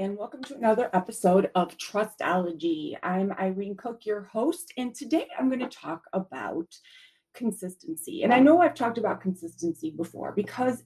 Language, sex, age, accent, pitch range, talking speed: English, female, 30-49, American, 180-255 Hz, 155 wpm